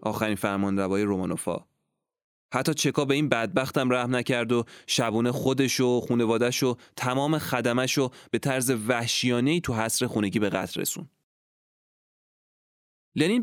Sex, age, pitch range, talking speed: male, 20-39, 100-130 Hz, 130 wpm